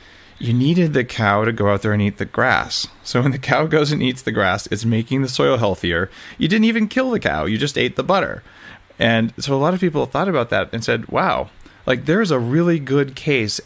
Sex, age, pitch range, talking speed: male, 30-49, 100-140 Hz, 240 wpm